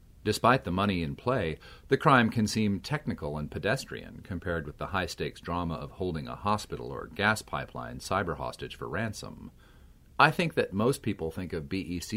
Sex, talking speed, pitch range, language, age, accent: male, 180 wpm, 80-105 Hz, English, 40-59, American